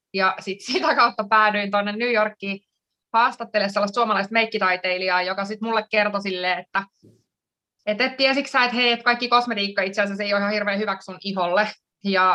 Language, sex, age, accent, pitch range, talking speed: Finnish, female, 20-39, native, 195-240 Hz, 180 wpm